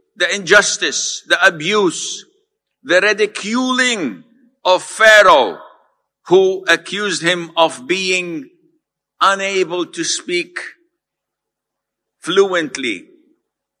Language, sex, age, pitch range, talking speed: Malay, male, 60-79, 185-275 Hz, 75 wpm